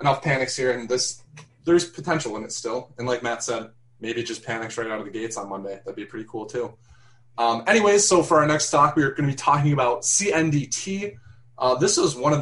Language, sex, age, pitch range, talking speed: English, male, 20-39, 115-145 Hz, 235 wpm